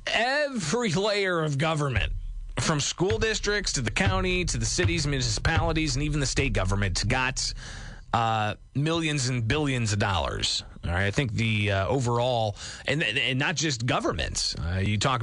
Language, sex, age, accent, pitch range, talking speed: English, male, 30-49, American, 105-145 Hz, 160 wpm